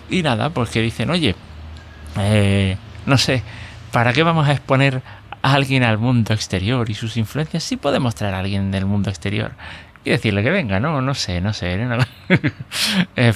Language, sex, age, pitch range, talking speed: Spanish, male, 30-49, 100-125 Hz, 195 wpm